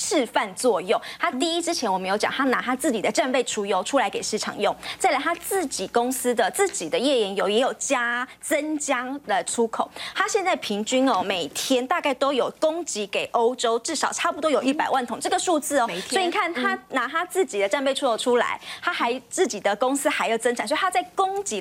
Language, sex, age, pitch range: Chinese, female, 20-39, 220-290 Hz